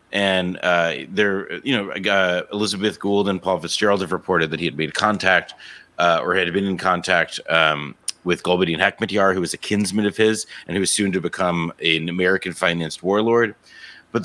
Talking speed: 185 wpm